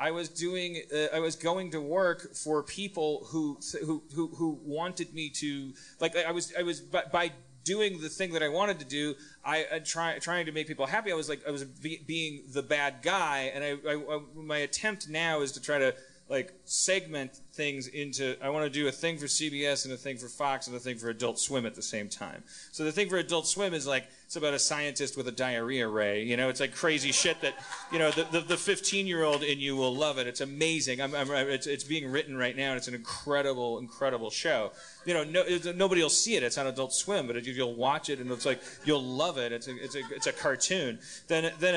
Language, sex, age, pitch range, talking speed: English, male, 30-49, 130-160 Hz, 250 wpm